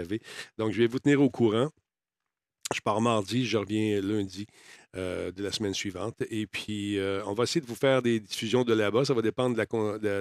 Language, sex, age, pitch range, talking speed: French, male, 50-69, 100-120 Hz, 215 wpm